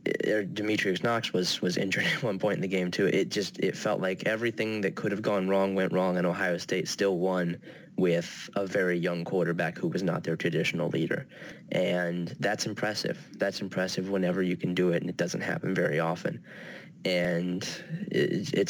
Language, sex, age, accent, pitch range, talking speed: English, male, 10-29, American, 90-105 Hz, 190 wpm